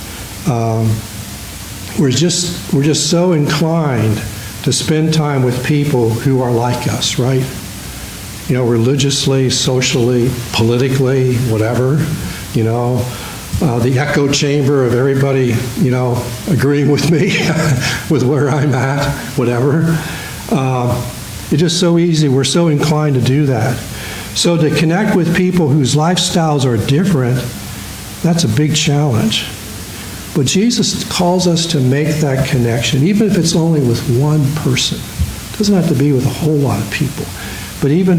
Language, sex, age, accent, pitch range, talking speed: English, male, 60-79, American, 115-155 Hz, 145 wpm